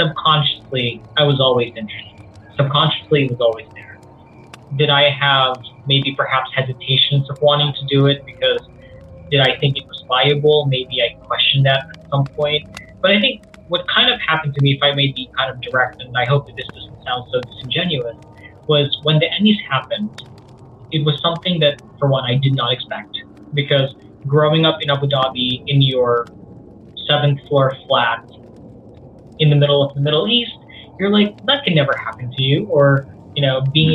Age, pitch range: 20-39, 125-150 Hz